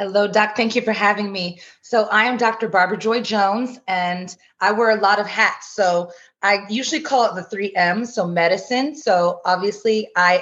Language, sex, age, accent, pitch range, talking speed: English, female, 30-49, American, 170-205 Hz, 195 wpm